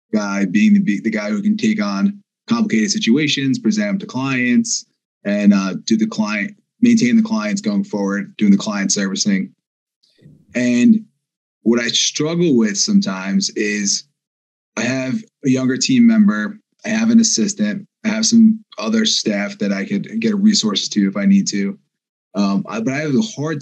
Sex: male